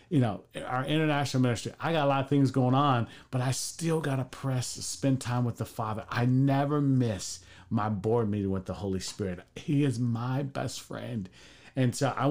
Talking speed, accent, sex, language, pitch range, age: 210 wpm, American, male, English, 120-180 Hz, 40-59